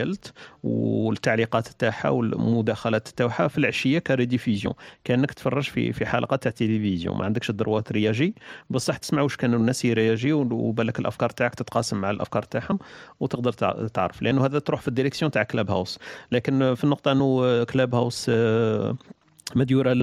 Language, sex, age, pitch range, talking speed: Arabic, male, 40-59, 105-125 Hz, 145 wpm